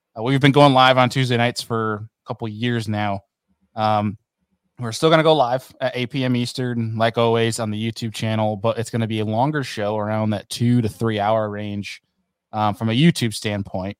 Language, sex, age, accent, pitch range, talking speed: English, male, 20-39, American, 105-125 Hz, 215 wpm